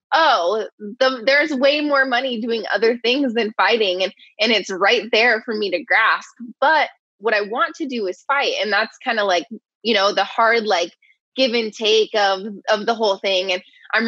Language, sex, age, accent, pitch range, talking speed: English, female, 20-39, American, 185-235 Hz, 200 wpm